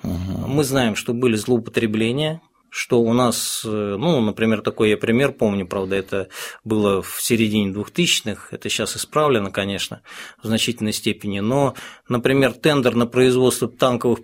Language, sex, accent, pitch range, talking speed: Russian, male, native, 110-135 Hz, 140 wpm